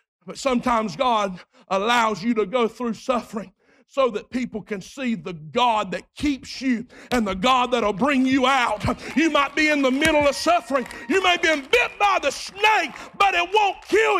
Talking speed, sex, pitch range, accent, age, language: 190 wpm, male, 275-365 Hz, American, 50-69, English